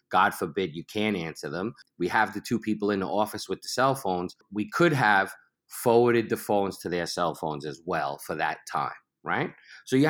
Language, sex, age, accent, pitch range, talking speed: English, male, 30-49, American, 105-135 Hz, 215 wpm